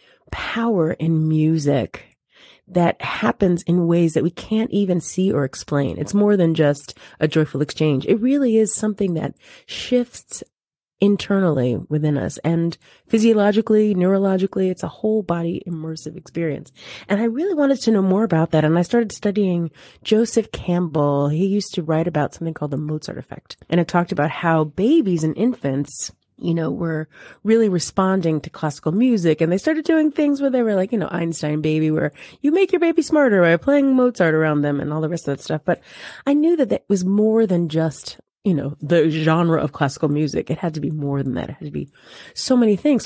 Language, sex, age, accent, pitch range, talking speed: English, female, 30-49, American, 155-215 Hz, 195 wpm